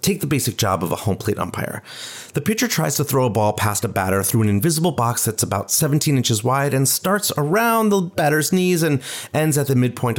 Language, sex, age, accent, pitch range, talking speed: English, male, 30-49, American, 110-150 Hz, 230 wpm